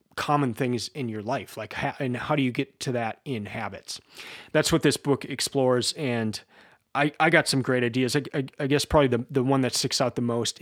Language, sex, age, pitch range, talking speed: English, male, 30-49, 120-145 Hz, 230 wpm